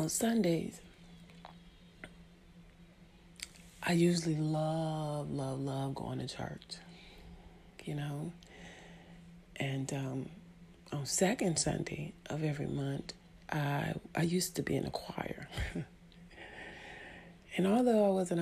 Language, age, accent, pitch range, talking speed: English, 40-59, American, 155-175 Hz, 105 wpm